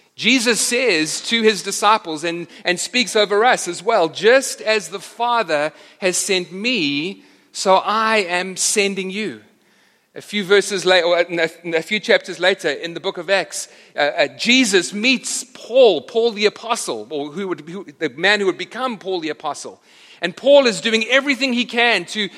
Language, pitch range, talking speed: English, 165-225 Hz, 180 wpm